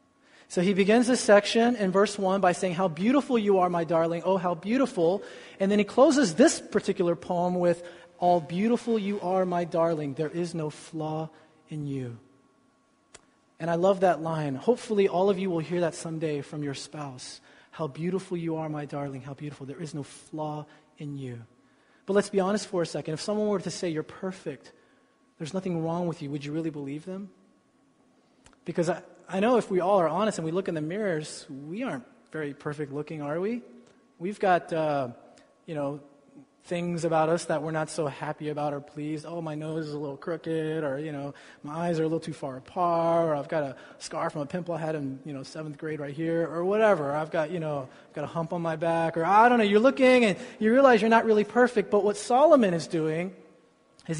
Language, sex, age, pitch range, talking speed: English, male, 30-49, 150-195 Hz, 220 wpm